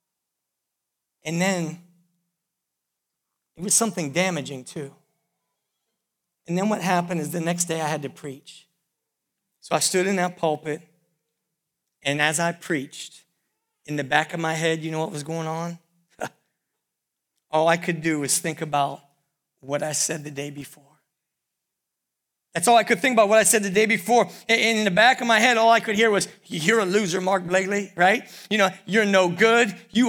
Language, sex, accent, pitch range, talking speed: English, male, American, 170-230 Hz, 175 wpm